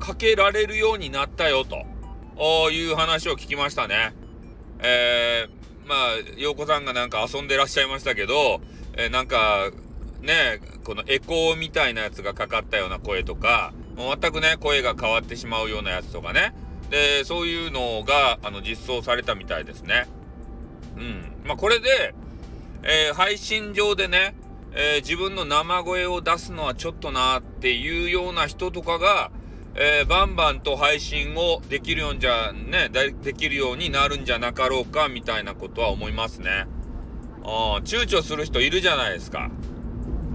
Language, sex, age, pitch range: Japanese, male, 40-59, 115-170 Hz